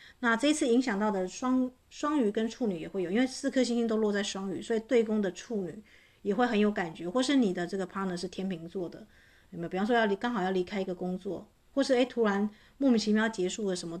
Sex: female